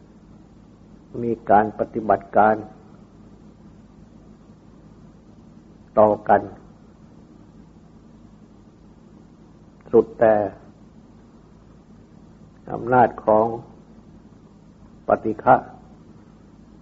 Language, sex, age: Thai, male, 60-79